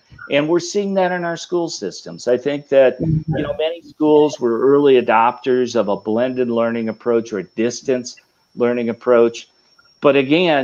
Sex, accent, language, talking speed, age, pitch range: male, American, English, 170 wpm, 50-69, 115-145 Hz